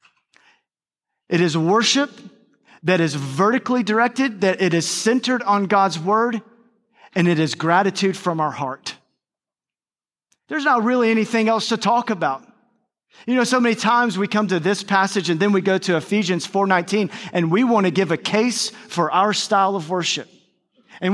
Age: 40-59